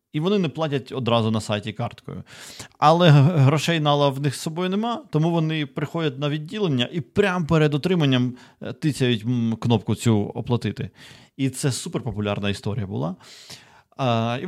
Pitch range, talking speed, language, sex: 110-150 Hz, 145 wpm, Ukrainian, male